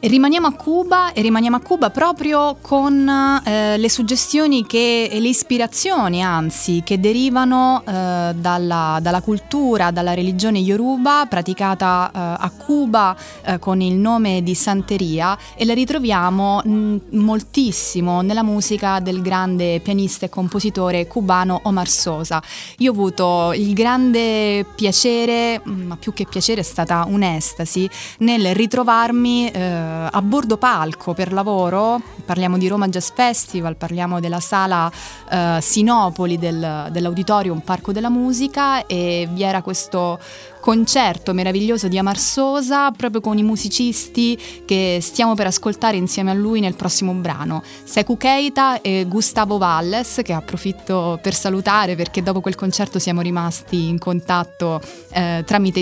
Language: Italian